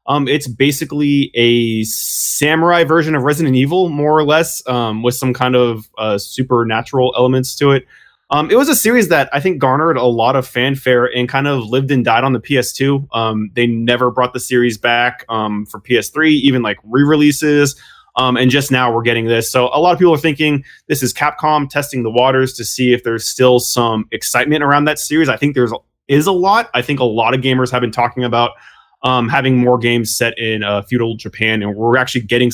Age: 20-39